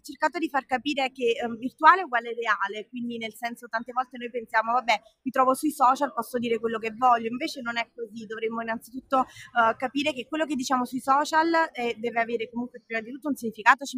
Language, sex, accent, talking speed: Italian, female, native, 225 wpm